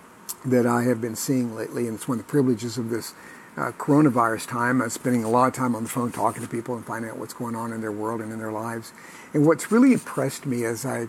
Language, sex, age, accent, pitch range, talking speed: English, male, 50-69, American, 115-135 Hz, 265 wpm